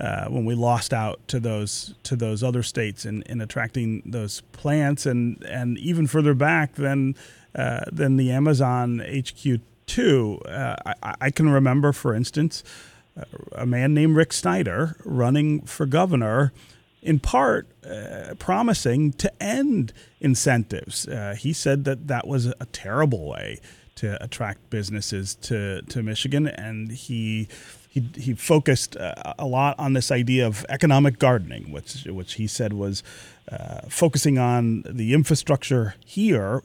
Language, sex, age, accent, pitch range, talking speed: English, male, 30-49, American, 115-145 Hz, 145 wpm